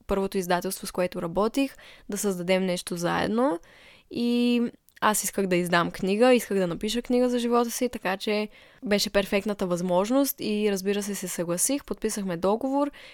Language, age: Bulgarian, 10-29